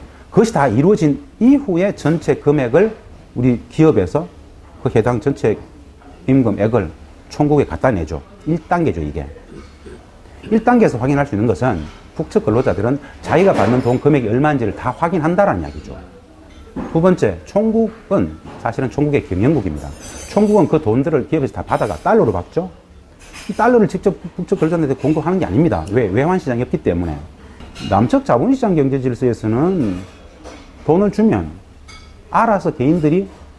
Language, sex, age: Korean, male, 40-59